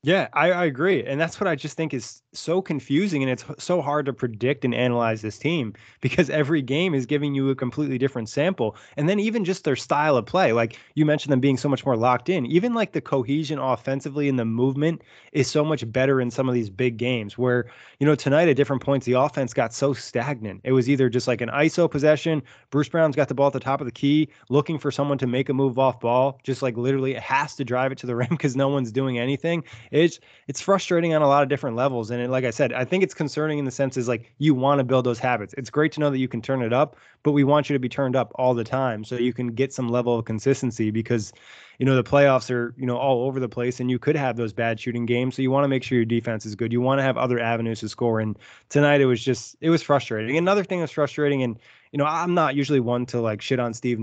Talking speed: 275 wpm